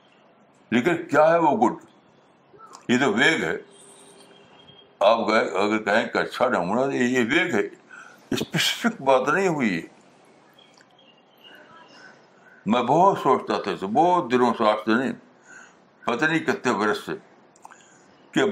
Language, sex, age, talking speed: Urdu, male, 60-79, 130 wpm